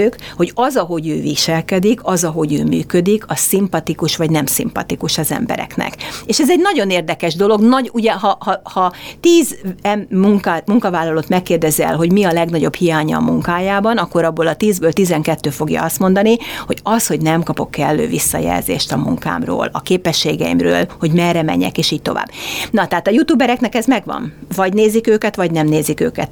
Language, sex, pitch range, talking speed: Hungarian, female, 160-205 Hz, 175 wpm